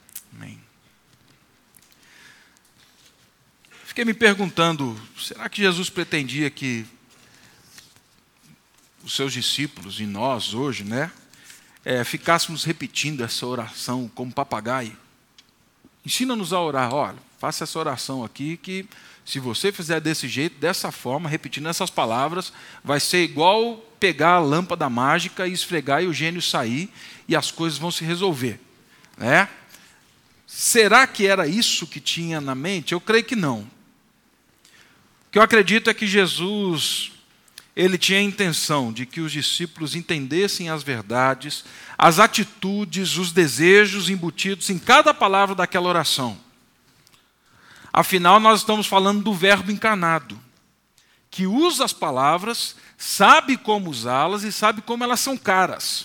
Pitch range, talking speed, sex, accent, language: 135-200 Hz, 130 wpm, male, Brazilian, Portuguese